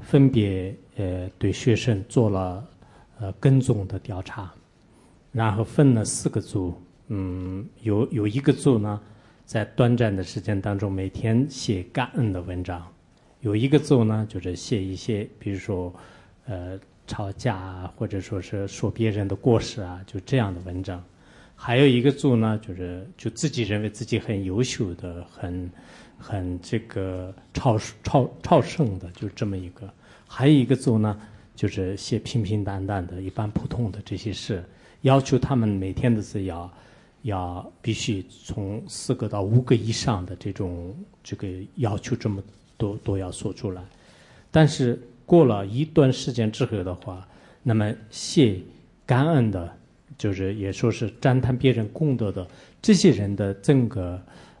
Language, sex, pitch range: English, male, 95-120 Hz